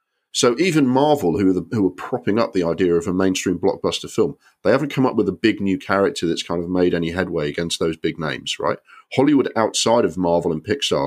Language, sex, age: English, male, 40-59